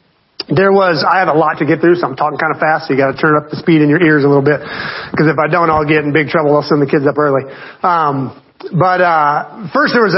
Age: 40-59